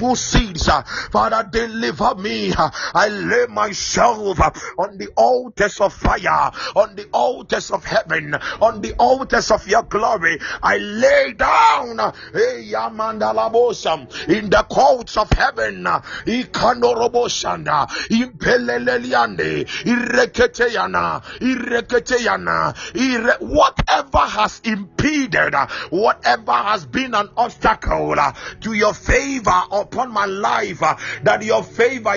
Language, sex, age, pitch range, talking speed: English, male, 50-69, 210-255 Hz, 105 wpm